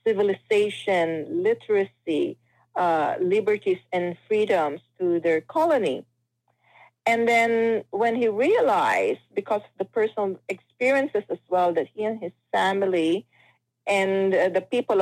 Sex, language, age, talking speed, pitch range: female, Filipino, 40-59, 120 wpm, 180-235 Hz